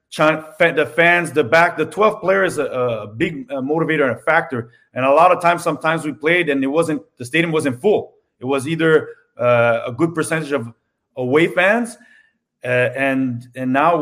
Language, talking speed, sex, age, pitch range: English, 190 wpm, male, 30-49, 145-180 Hz